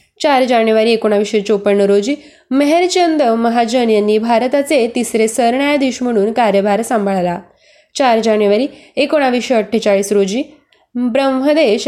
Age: 20-39